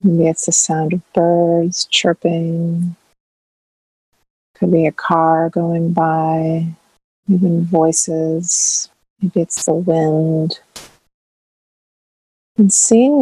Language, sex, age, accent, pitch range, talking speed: English, female, 30-49, American, 165-185 Hz, 95 wpm